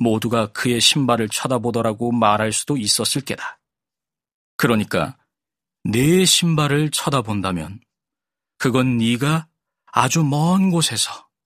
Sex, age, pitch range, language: male, 40-59, 110-145 Hz, Korean